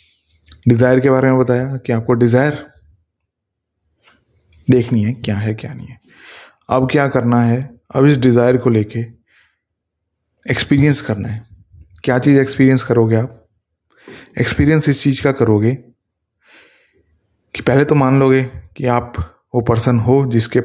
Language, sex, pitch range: Hindi, male, 110-130 Hz